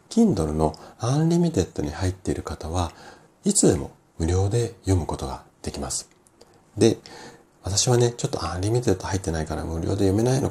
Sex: male